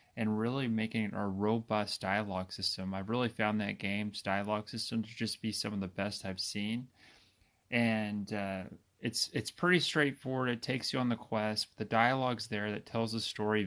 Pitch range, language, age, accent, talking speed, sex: 100-115 Hz, English, 30-49, American, 195 wpm, male